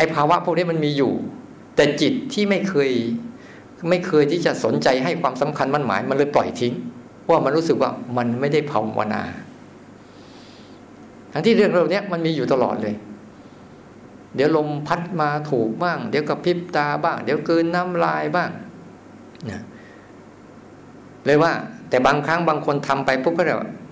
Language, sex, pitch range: Thai, male, 120-165 Hz